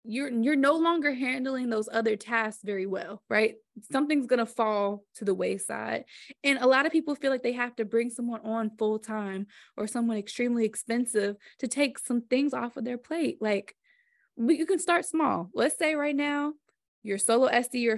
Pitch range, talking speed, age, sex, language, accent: 210-275 Hz, 195 wpm, 20-39, female, English, American